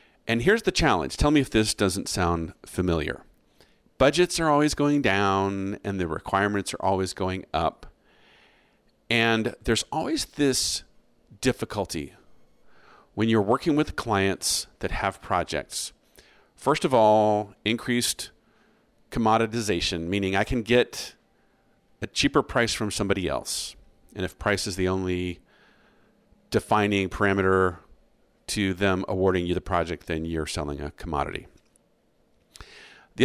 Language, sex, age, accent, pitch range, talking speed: English, male, 40-59, American, 95-125 Hz, 130 wpm